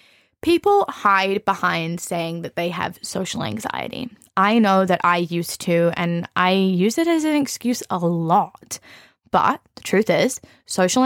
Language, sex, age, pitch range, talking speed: English, female, 20-39, 175-225 Hz, 155 wpm